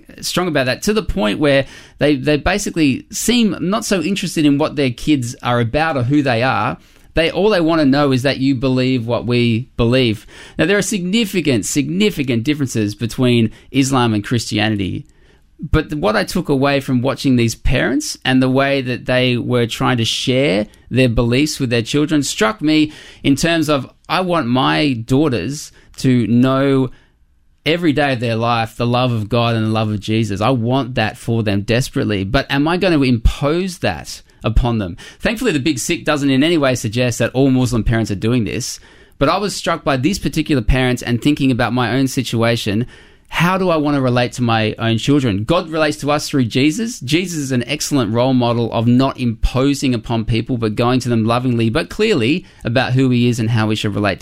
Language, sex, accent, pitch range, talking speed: English, male, Australian, 115-145 Hz, 205 wpm